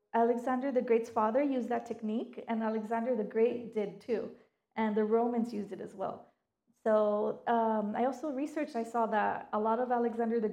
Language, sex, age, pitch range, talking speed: English, female, 30-49, 215-245 Hz, 190 wpm